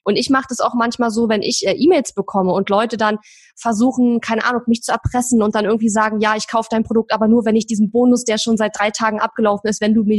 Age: 20-39